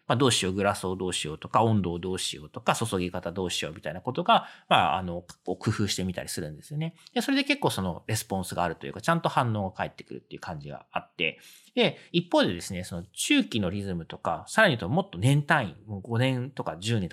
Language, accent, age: Japanese, native, 40-59